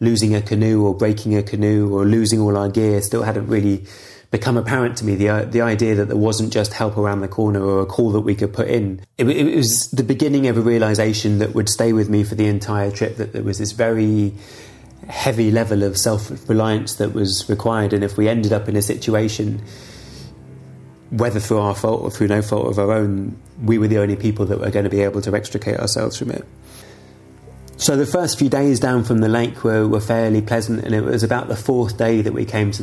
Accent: British